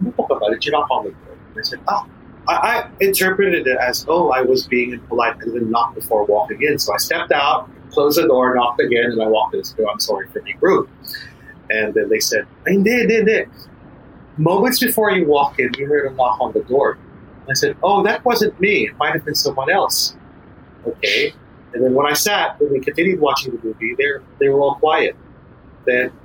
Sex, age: male, 30-49